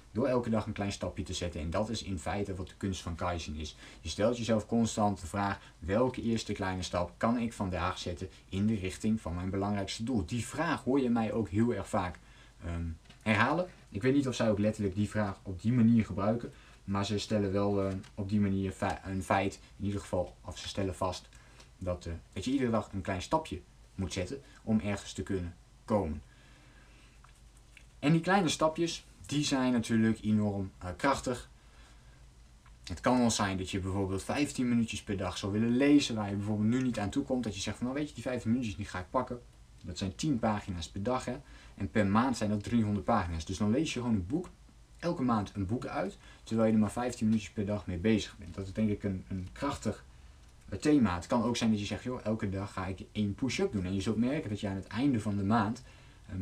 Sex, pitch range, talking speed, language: male, 95-115 Hz, 230 wpm, Dutch